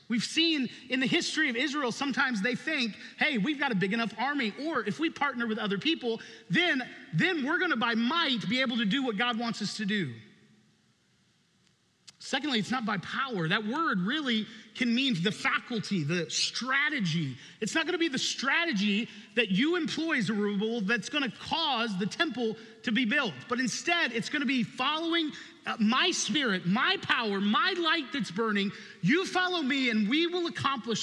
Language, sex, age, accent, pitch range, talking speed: English, male, 30-49, American, 200-270 Hz, 190 wpm